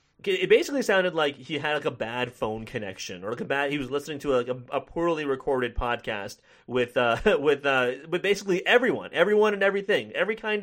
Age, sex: 30-49, male